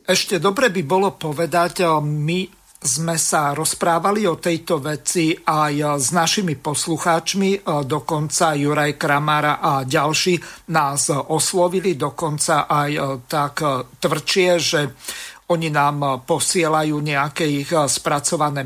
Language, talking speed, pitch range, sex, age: Slovak, 110 wpm, 150-175 Hz, male, 50-69